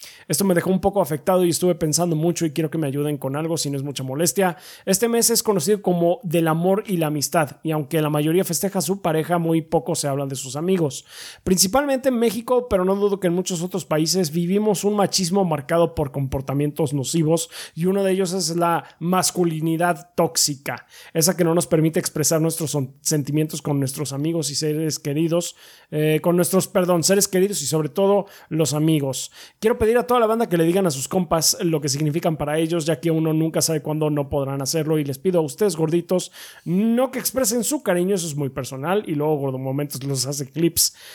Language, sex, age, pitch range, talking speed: Spanish, male, 30-49, 150-185 Hz, 215 wpm